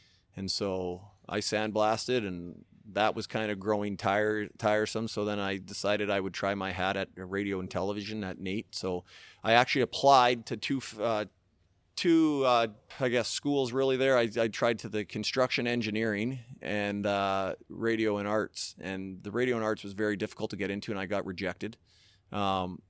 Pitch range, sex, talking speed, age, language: 100-115 Hz, male, 175 wpm, 30-49, English